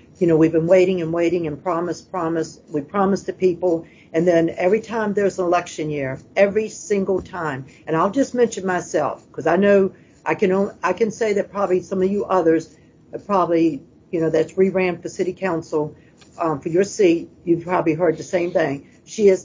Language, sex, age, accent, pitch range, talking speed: English, female, 60-79, American, 165-205 Hz, 200 wpm